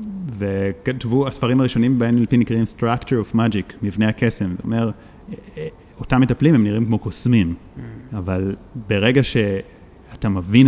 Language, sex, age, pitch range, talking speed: Hebrew, male, 30-49, 100-125 Hz, 130 wpm